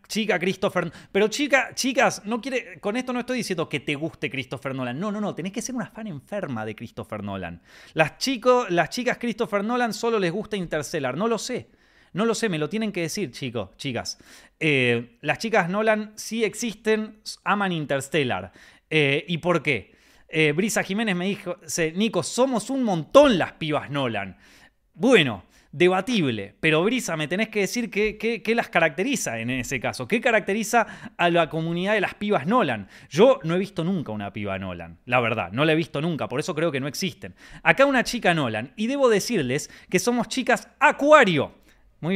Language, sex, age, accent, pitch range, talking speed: Spanish, male, 30-49, Argentinian, 135-215 Hz, 190 wpm